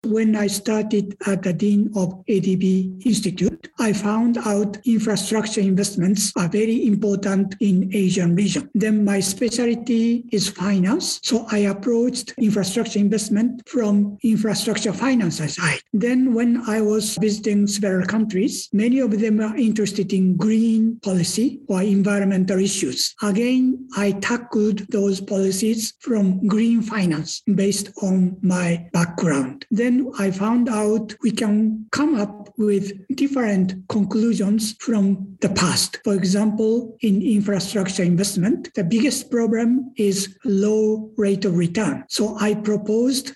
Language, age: English, 60-79